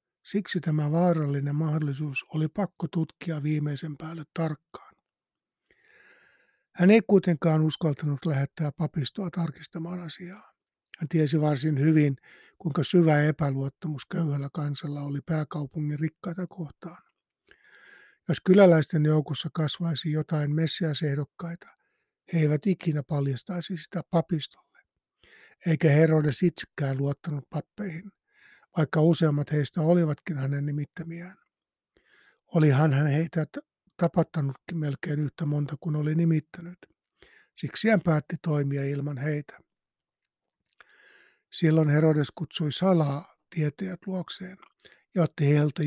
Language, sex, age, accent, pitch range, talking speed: Finnish, male, 60-79, native, 150-180 Hz, 105 wpm